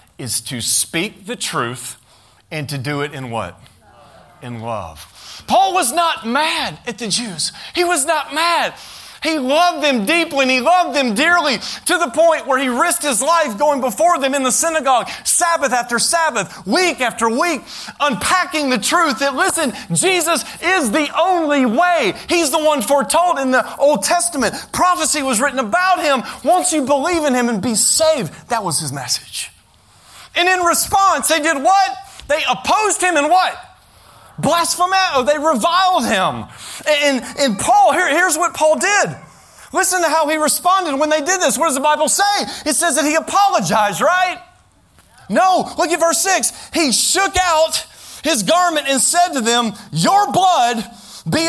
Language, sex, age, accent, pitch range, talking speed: English, male, 30-49, American, 235-340 Hz, 175 wpm